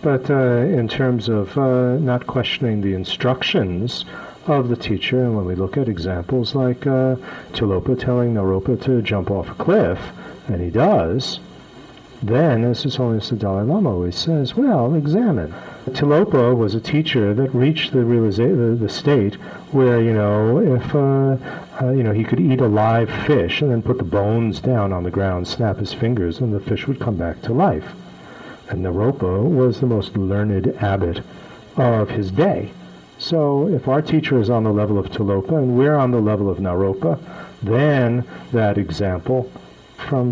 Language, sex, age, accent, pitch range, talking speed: English, male, 50-69, American, 100-135 Hz, 175 wpm